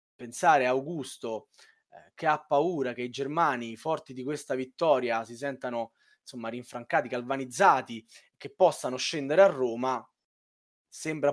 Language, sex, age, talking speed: Italian, male, 20-39, 140 wpm